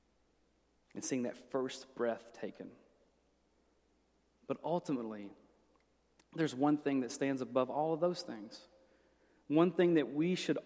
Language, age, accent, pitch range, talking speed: English, 30-49, American, 125-155 Hz, 130 wpm